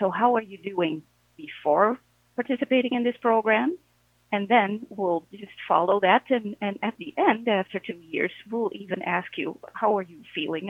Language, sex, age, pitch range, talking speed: English, female, 40-59, 160-225 Hz, 180 wpm